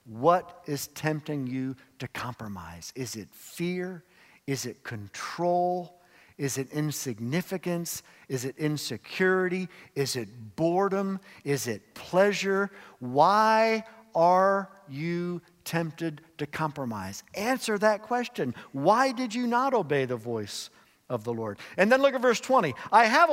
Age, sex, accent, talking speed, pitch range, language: 50-69, male, American, 130 wpm, 125-215 Hz, English